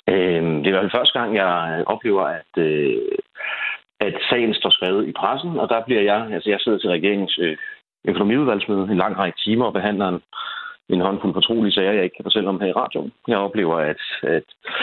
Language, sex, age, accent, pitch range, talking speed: Danish, male, 40-59, native, 95-115 Hz, 190 wpm